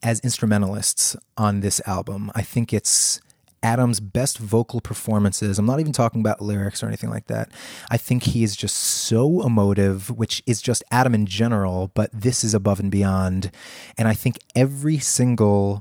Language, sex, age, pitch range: English, male, 30-49, 105-120 Hz